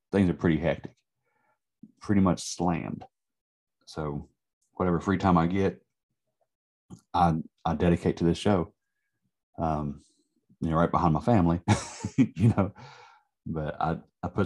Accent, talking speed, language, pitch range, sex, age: American, 135 wpm, English, 80-90 Hz, male, 30-49